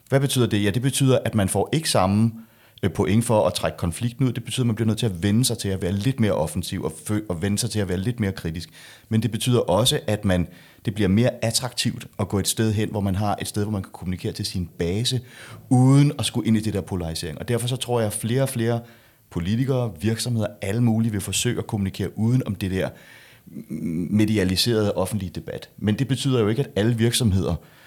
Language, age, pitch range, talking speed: Danish, 30-49, 95-115 Hz, 240 wpm